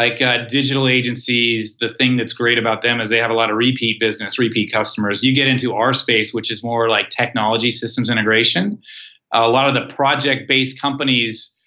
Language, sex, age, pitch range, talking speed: English, male, 30-49, 110-130 Hz, 200 wpm